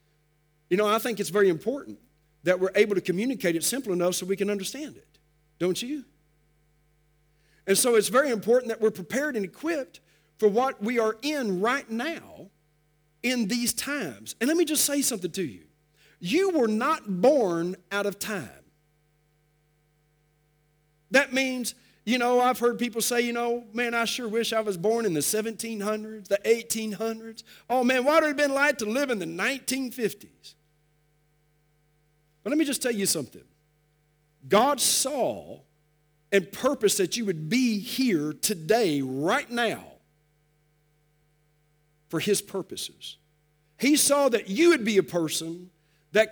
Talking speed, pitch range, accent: 160 wpm, 150-240 Hz, American